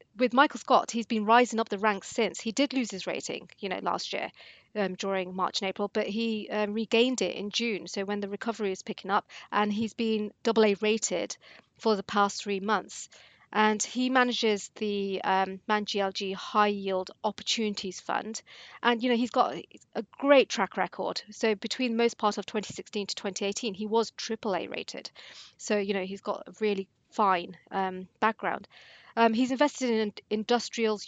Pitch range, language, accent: 195-225 Hz, English, British